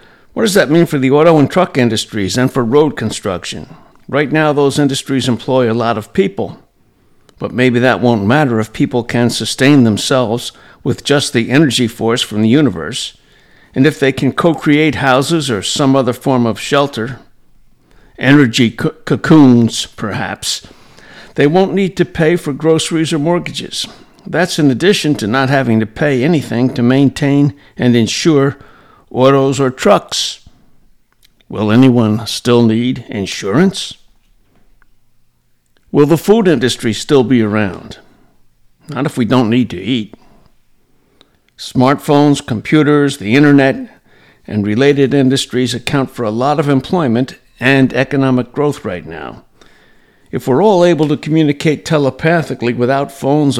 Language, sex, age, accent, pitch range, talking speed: English, male, 60-79, American, 120-150 Hz, 140 wpm